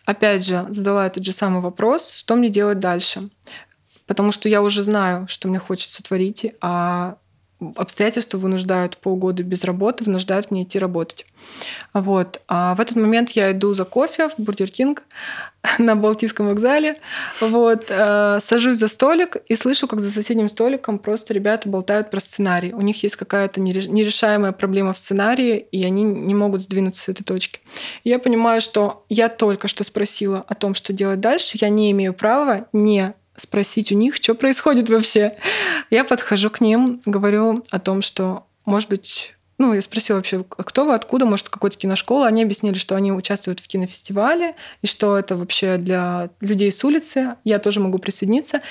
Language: Russian